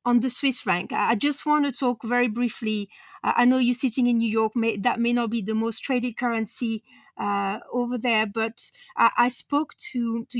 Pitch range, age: 215-250 Hz, 40-59